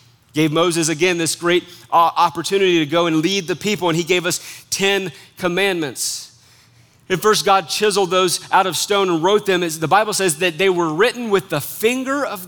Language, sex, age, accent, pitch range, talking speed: English, male, 30-49, American, 135-195 Hz, 200 wpm